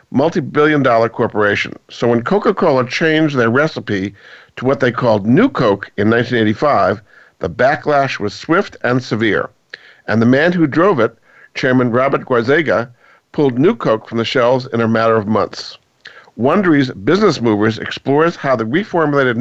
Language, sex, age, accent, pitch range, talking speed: English, male, 50-69, American, 115-145 Hz, 150 wpm